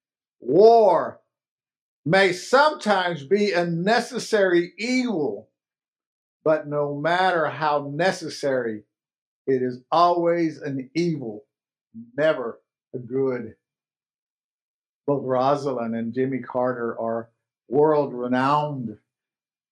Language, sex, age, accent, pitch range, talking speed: English, male, 50-69, American, 135-195 Hz, 80 wpm